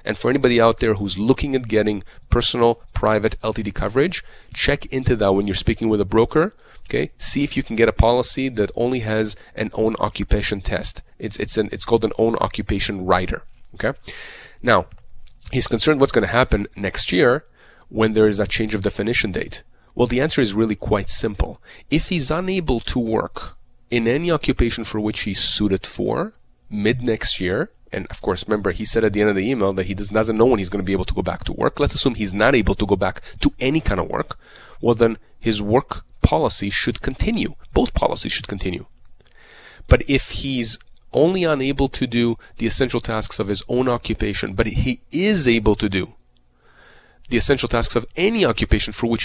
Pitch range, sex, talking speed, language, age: 105-120 Hz, male, 200 wpm, English, 30-49